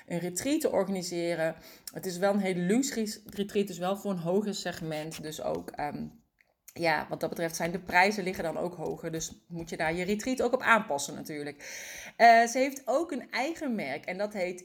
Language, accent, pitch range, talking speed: Dutch, Dutch, 165-215 Hz, 210 wpm